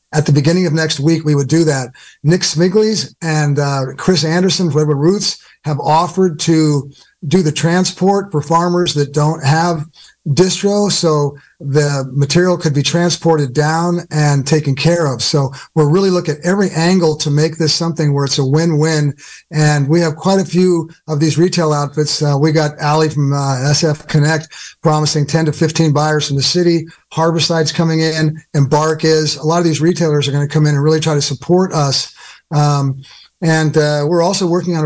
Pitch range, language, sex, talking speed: 145-170 Hz, English, male, 190 wpm